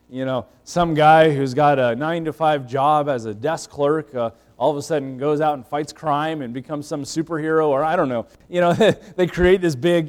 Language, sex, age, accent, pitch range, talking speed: English, male, 30-49, American, 135-175 Hz, 220 wpm